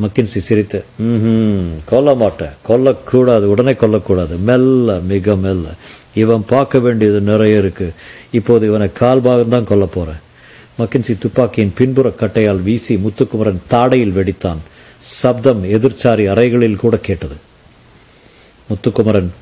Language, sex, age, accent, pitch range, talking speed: Tamil, male, 50-69, native, 100-120 Hz, 45 wpm